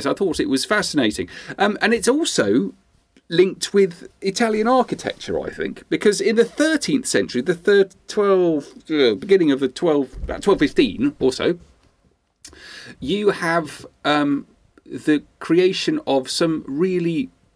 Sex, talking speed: male, 135 wpm